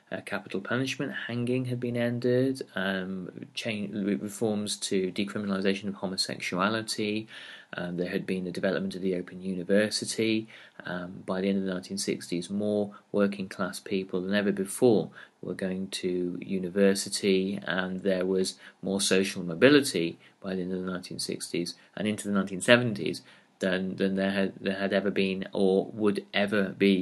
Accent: British